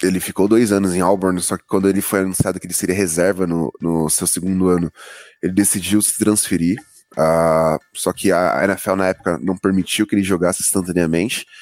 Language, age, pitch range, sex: English, 20-39, 90-100 Hz, male